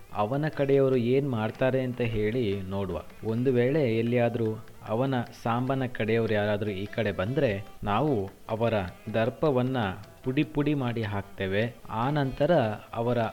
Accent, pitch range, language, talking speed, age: native, 105-135 Hz, Kannada, 120 wpm, 30-49